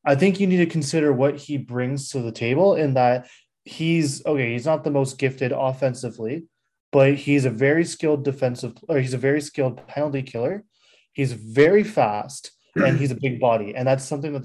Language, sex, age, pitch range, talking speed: English, male, 20-39, 125-150 Hz, 195 wpm